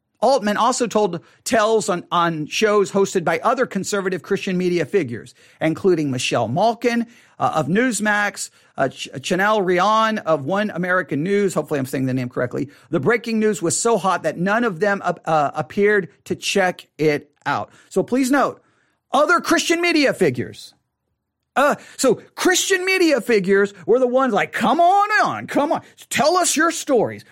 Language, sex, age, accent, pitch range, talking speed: English, male, 40-59, American, 170-255 Hz, 165 wpm